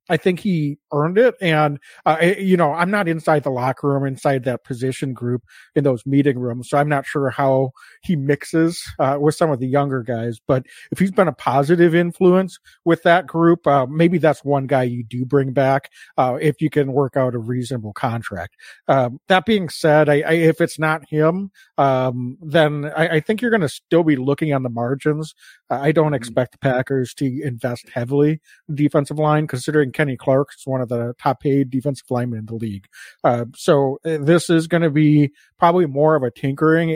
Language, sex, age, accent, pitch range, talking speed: English, male, 40-59, American, 135-160 Hz, 210 wpm